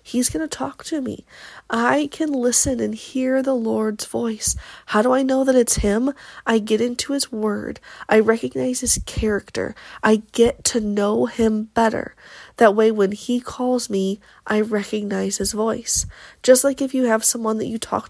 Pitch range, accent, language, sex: 205-250 Hz, American, English, female